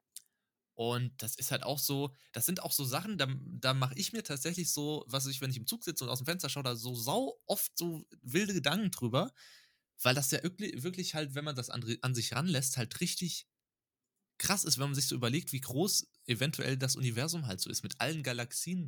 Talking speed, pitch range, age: 225 wpm, 120-170 Hz, 20-39